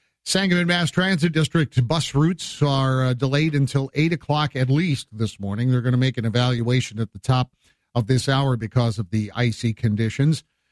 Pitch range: 115-140 Hz